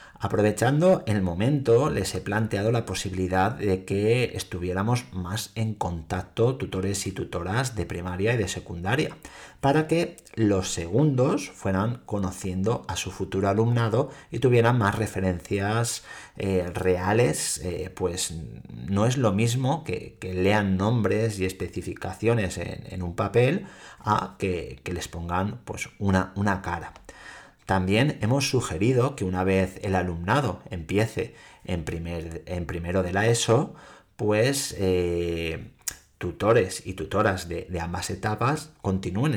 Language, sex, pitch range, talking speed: Spanish, male, 95-115 Hz, 135 wpm